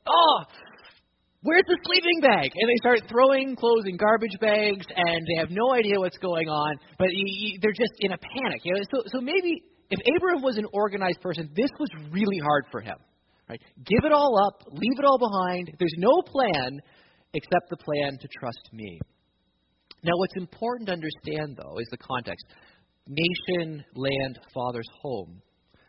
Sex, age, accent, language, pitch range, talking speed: male, 30-49, American, English, 120-195 Hz, 165 wpm